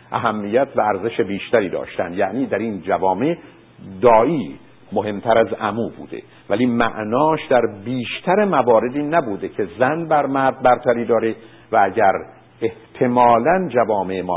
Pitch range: 115-160 Hz